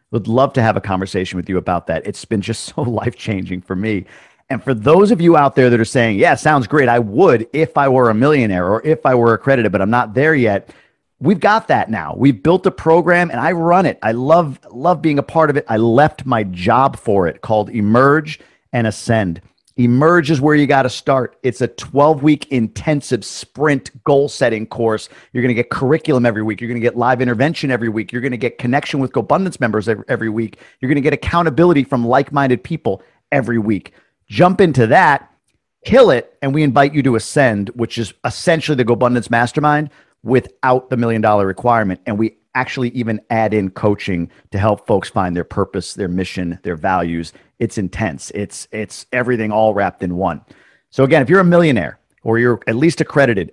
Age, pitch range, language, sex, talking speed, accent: 40-59, 110-140 Hz, English, male, 205 wpm, American